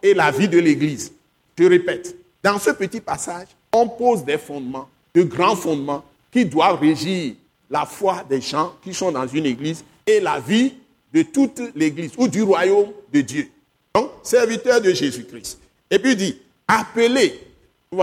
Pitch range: 150-205 Hz